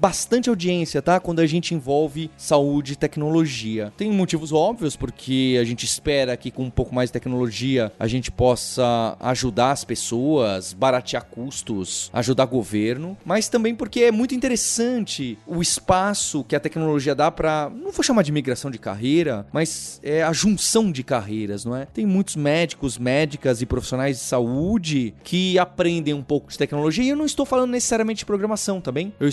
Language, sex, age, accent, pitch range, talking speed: Portuguese, male, 20-39, Brazilian, 125-170 Hz, 180 wpm